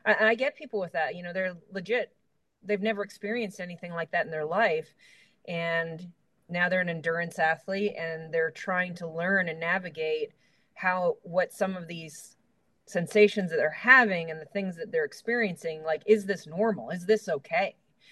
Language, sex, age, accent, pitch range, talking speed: English, female, 30-49, American, 165-210 Hz, 175 wpm